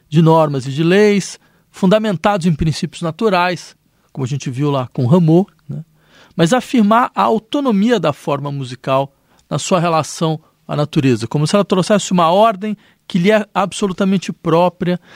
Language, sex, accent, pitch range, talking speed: Portuguese, male, Brazilian, 155-210 Hz, 160 wpm